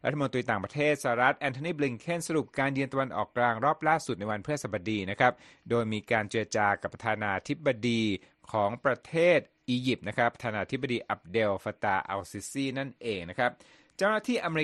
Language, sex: Thai, male